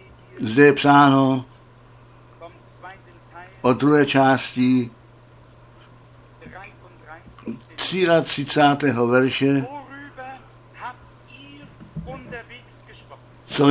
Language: Czech